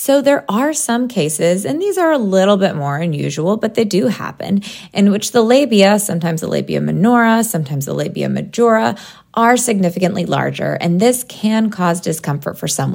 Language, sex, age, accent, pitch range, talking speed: English, female, 20-39, American, 175-225 Hz, 180 wpm